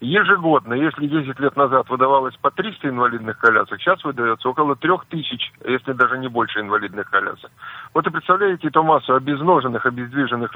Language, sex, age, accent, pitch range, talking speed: Russian, male, 50-69, native, 135-195 Hz, 165 wpm